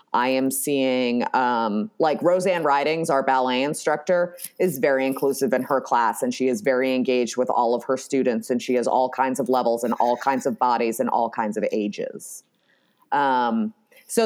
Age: 30-49